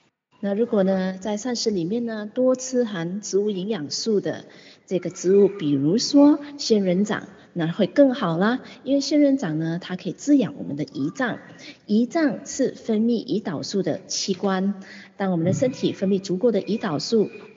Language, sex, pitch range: Chinese, female, 175-235 Hz